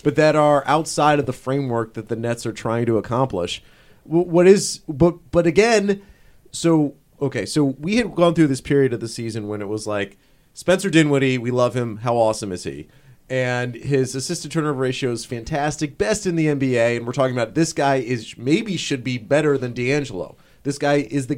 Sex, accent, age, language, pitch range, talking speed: male, American, 30-49, English, 125-165 Hz, 210 wpm